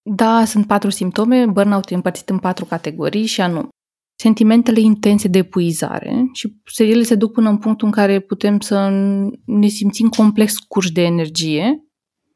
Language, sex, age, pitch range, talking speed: Romanian, female, 20-39, 185-225 Hz, 155 wpm